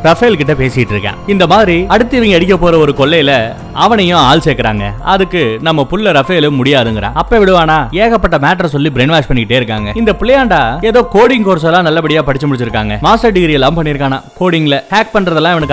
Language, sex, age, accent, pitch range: Tamil, male, 30-49, native, 140-185 Hz